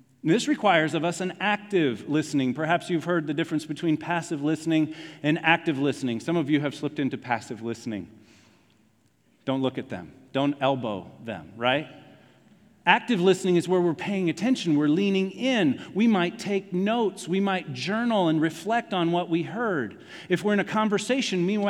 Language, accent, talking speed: English, American, 170 wpm